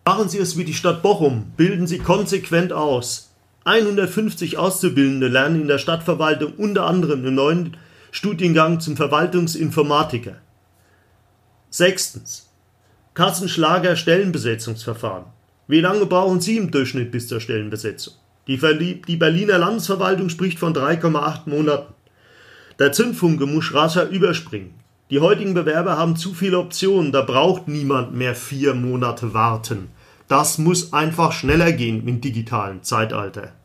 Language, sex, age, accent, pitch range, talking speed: German, male, 40-59, German, 125-180 Hz, 125 wpm